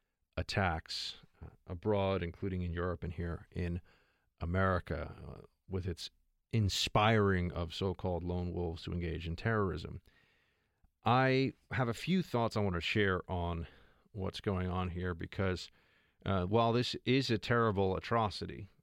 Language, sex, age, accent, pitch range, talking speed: English, male, 40-59, American, 90-105 Hz, 135 wpm